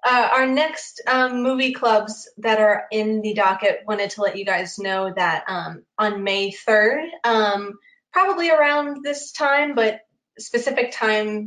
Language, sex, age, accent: English, female, 20-39, American